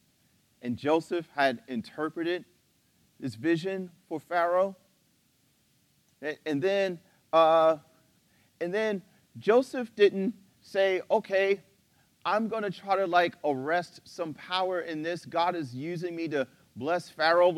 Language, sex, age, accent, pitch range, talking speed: English, male, 40-59, American, 160-195 Hz, 120 wpm